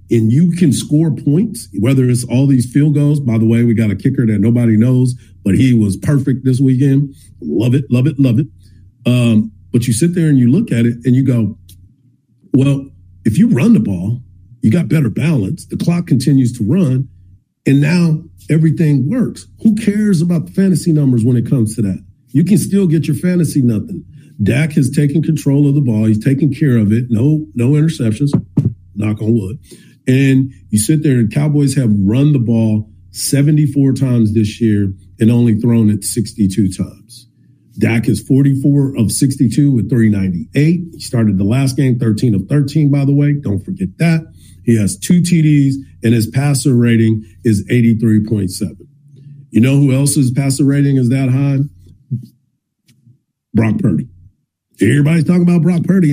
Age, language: 50-69, English